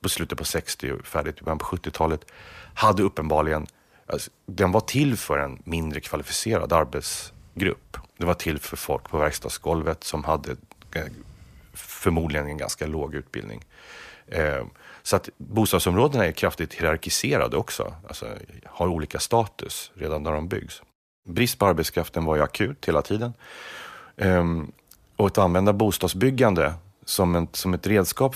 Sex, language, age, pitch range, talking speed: male, English, 30-49, 80-100 Hz, 145 wpm